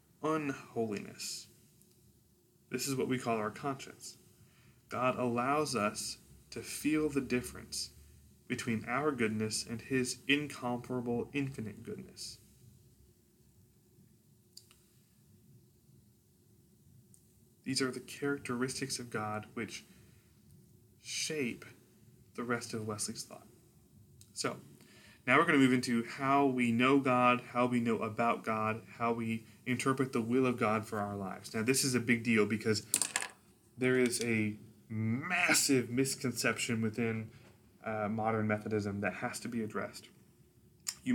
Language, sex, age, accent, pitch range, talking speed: English, male, 20-39, American, 110-125 Hz, 120 wpm